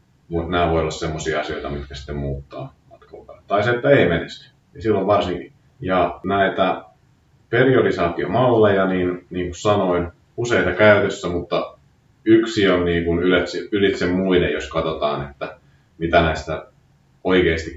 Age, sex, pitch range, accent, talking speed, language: 30-49, male, 80-95 Hz, native, 130 wpm, Finnish